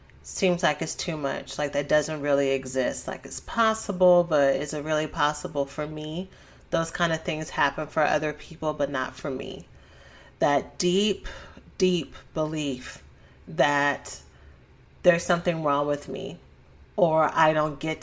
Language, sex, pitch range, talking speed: English, female, 145-175 Hz, 155 wpm